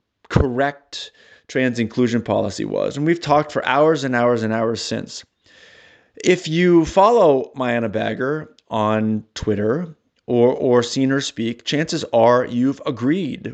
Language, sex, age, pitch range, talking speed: English, male, 30-49, 115-150 Hz, 135 wpm